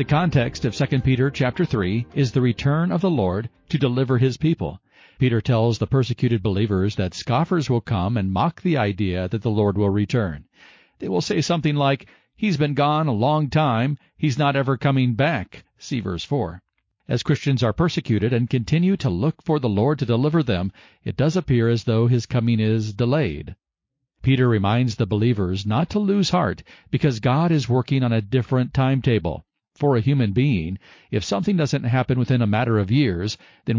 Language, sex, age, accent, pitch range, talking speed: English, male, 50-69, American, 110-145 Hz, 190 wpm